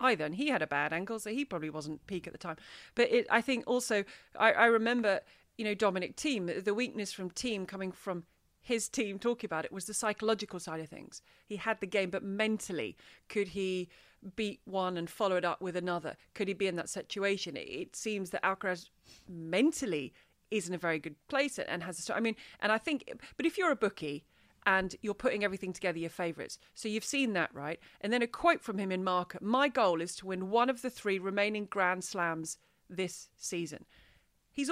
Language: English